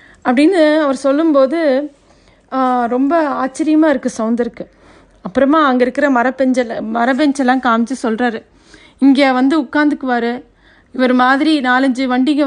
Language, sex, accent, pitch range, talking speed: Tamil, female, native, 235-285 Hz, 100 wpm